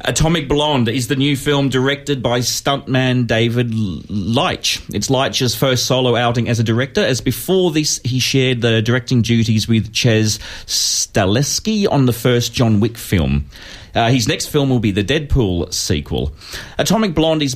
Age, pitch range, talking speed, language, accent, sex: 40-59, 105-135 Hz, 165 wpm, English, Australian, male